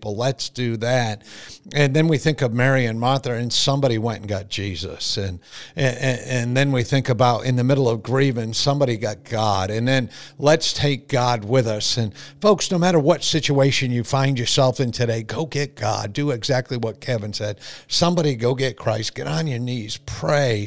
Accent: American